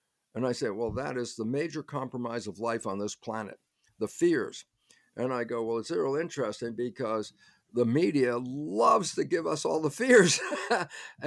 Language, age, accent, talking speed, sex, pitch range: English, 50-69, American, 175 wpm, male, 125-170 Hz